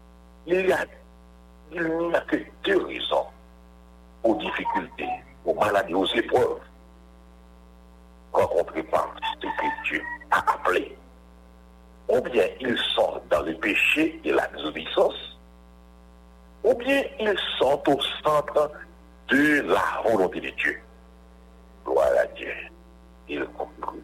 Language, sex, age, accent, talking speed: English, male, 60-79, French, 115 wpm